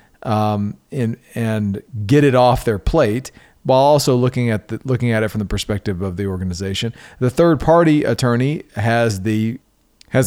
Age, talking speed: 40-59, 170 wpm